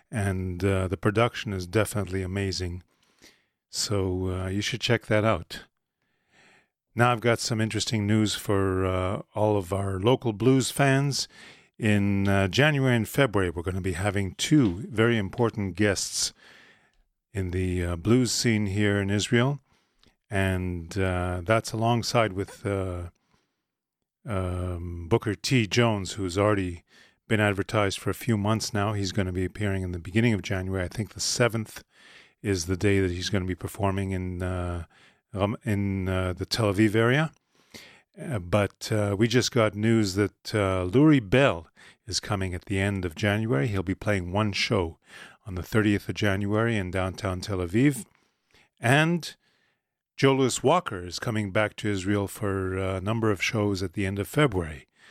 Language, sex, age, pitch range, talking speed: English, male, 40-59, 95-110 Hz, 165 wpm